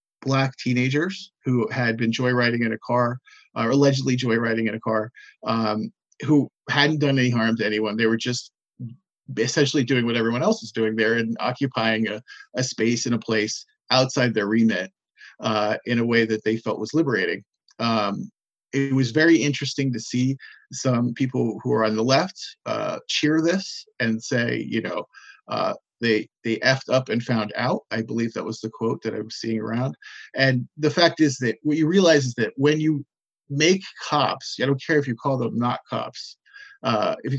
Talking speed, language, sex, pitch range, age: 195 wpm, English, male, 115-145 Hz, 40-59